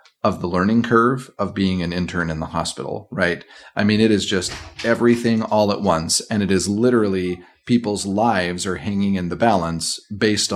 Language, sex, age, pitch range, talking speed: English, male, 40-59, 90-115 Hz, 190 wpm